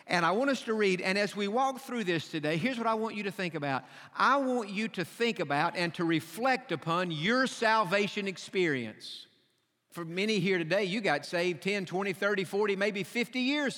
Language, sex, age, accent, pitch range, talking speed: English, male, 50-69, American, 165-215 Hz, 210 wpm